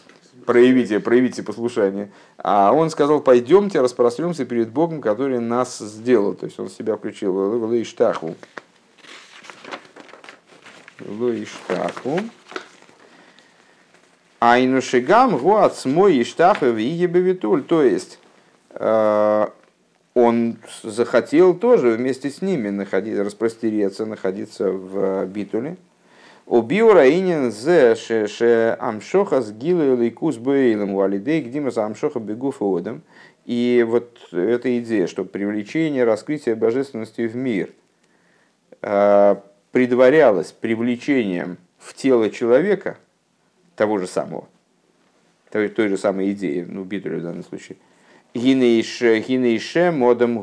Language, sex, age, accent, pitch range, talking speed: Russian, male, 50-69, native, 105-125 Hz, 95 wpm